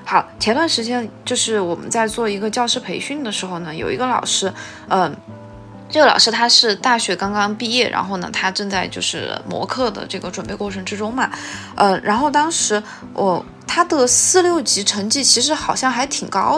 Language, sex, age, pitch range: Chinese, female, 20-39, 195-270 Hz